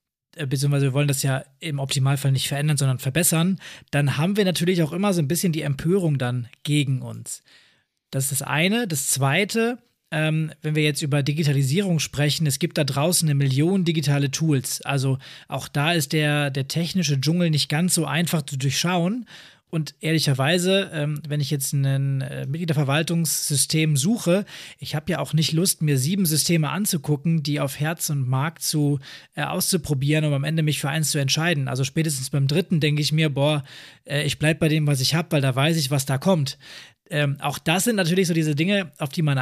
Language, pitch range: German, 140-165 Hz